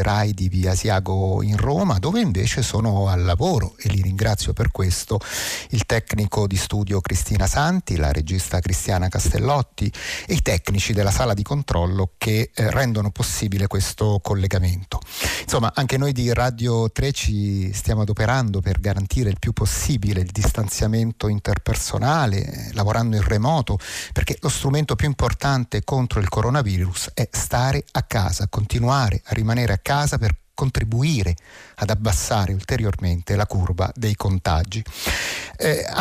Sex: male